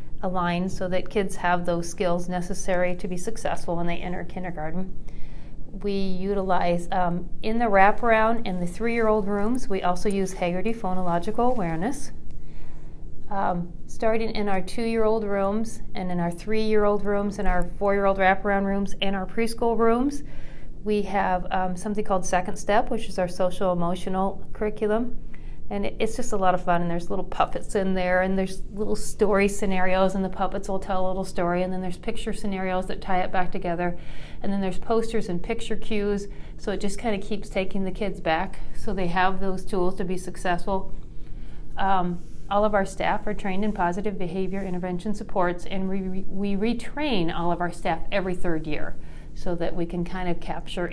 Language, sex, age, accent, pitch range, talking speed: English, female, 40-59, American, 180-205 Hz, 180 wpm